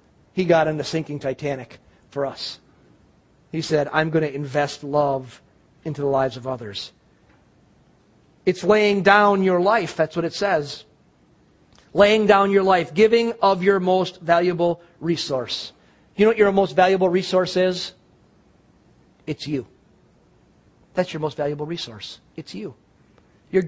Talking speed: 145 wpm